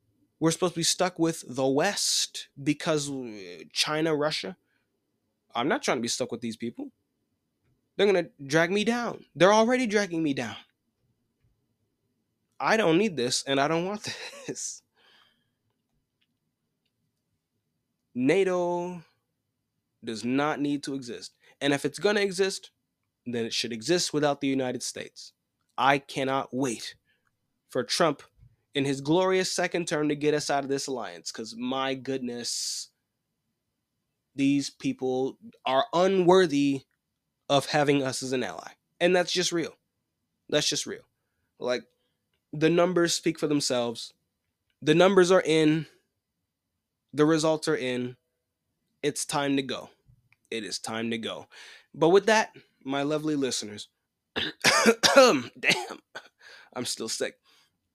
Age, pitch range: 20-39, 130-170 Hz